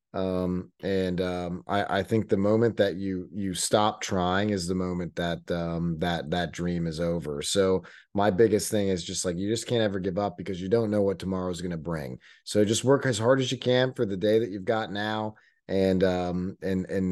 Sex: male